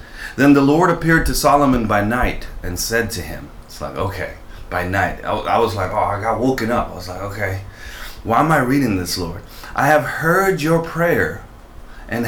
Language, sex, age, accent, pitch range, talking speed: English, male, 30-49, American, 110-155 Hz, 205 wpm